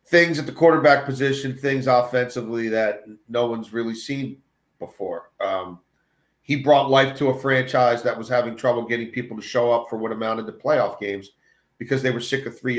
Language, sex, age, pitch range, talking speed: English, male, 40-59, 125-170 Hz, 190 wpm